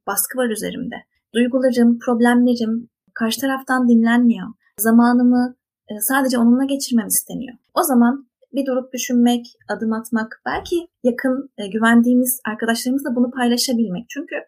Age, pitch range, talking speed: 30-49, 225-260 Hz, 110 wpm